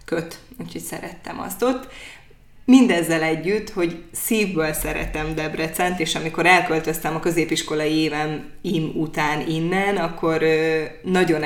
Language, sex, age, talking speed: Hungarian, female, 20-39, 120 wpm